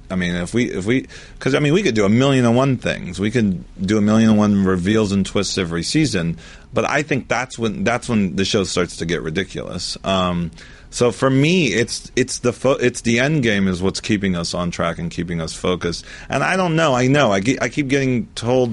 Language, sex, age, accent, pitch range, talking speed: English, male, 40-59, American, 85-120 Hz, 245 wpm